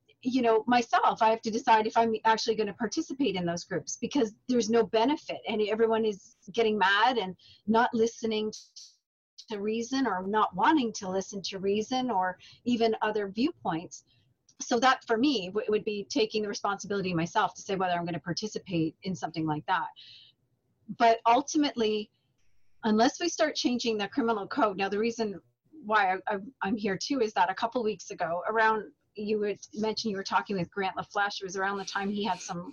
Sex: female